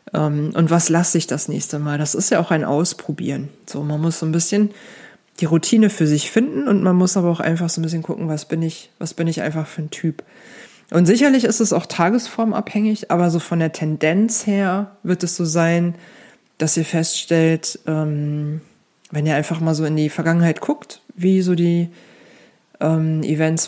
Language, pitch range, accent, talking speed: German, 155-190 Hz, German, 190 wpm